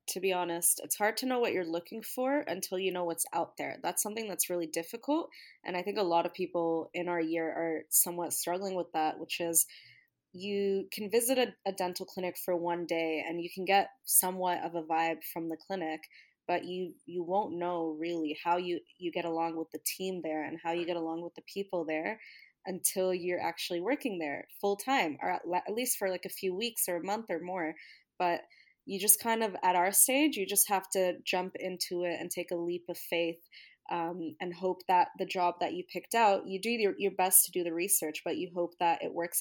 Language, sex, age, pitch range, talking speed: English, female, 20-39, 170-195 Hz, 230 wpm